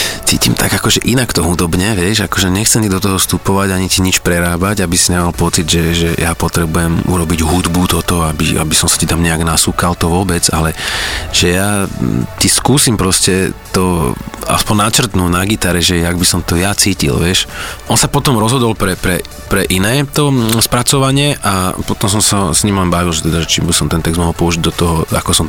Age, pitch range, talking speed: 30-49, 85-95 Hz, 210 wpm